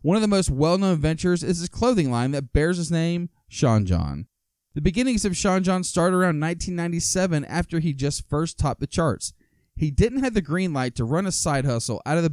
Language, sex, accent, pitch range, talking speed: English, male, American, 120-165 Hz, 220 wpm